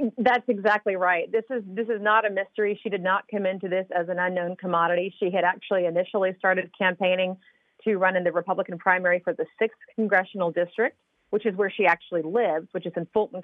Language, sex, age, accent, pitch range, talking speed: English, female, 30-49, American, 175-205 Hz, 210 wpm